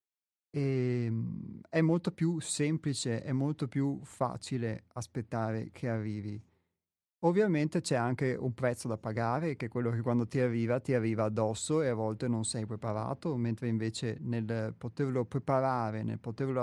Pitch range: 115-140 Hz